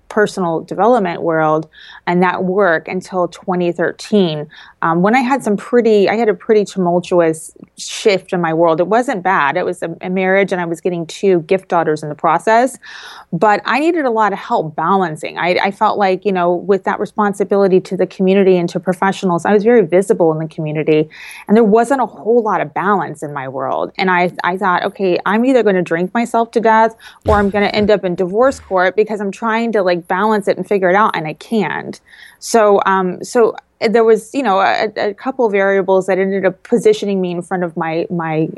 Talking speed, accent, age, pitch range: 215 wpm, American, 20-39, 180-220 Hz